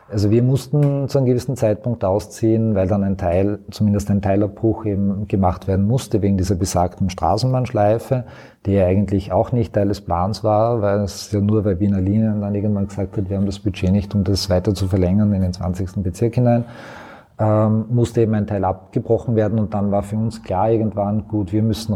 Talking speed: 205 wpm